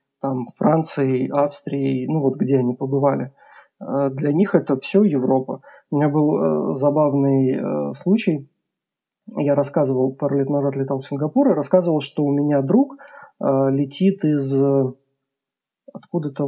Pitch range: 135-190 Hz